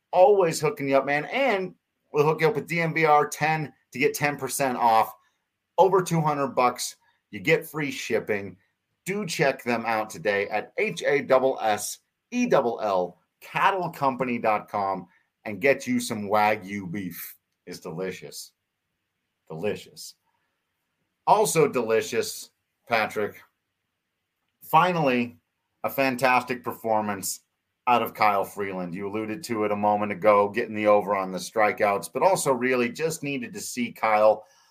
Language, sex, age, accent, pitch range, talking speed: English, male, 40-59, American, 105-140 Hz, 130 wpm